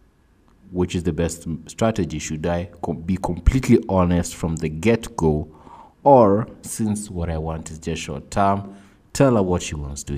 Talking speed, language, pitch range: 175 wpm, English, 80-95 Hz